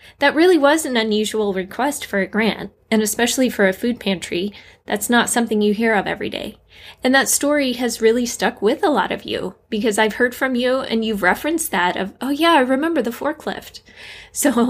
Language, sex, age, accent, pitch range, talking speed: English, female, 20-39, American, 200-245 Hz, 210 wpm